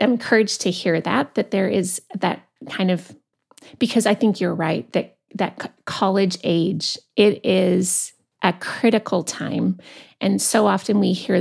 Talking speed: 160 wpm